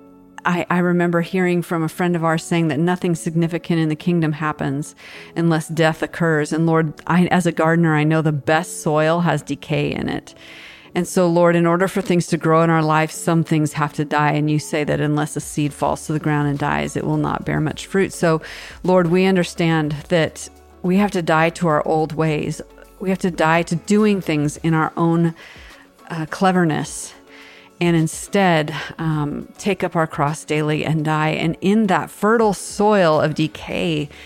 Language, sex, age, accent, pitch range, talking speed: English, female, 40-59, American, 155-180 Hz, 195 wpm